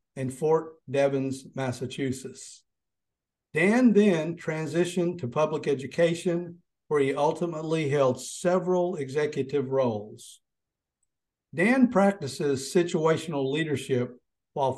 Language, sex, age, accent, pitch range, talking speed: English, male, 50-69, American, 135-170 Hz, 90 wpm